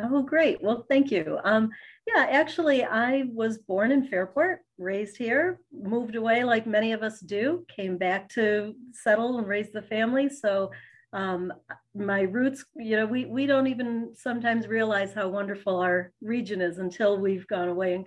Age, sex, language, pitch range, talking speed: 40-59, female, English, 185-225 Hz, 175 wpm